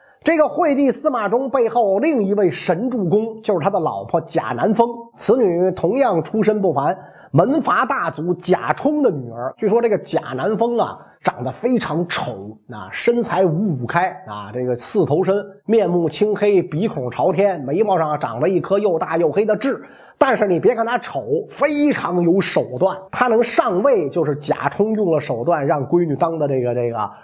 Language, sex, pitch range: Chinese, male, 170-250 Hz